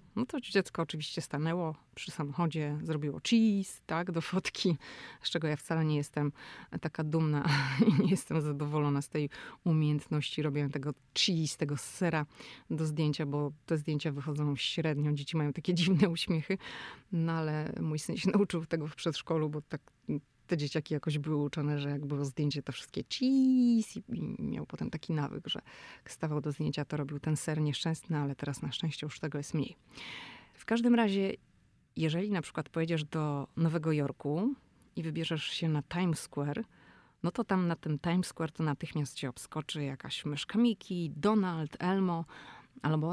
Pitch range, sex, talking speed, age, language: 150-170 Hz, female, 170 wpm, 30-49, Polish